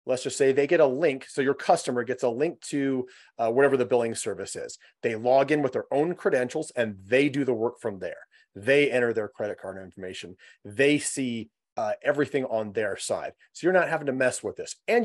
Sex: male